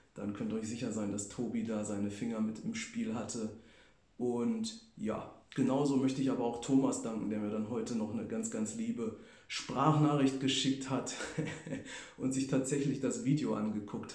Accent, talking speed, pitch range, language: German, 180 wpm, 115-140 Hz, German